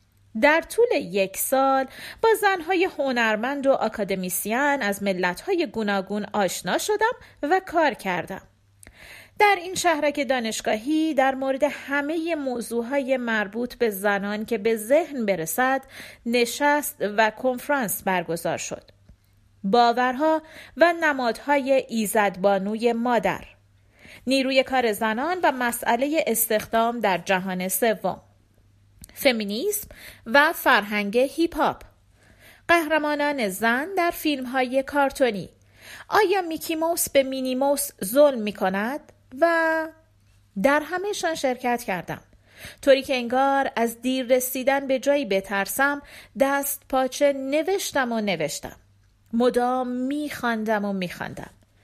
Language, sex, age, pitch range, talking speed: Persian, female, 40-59, 205-290 Hz, 110 wpm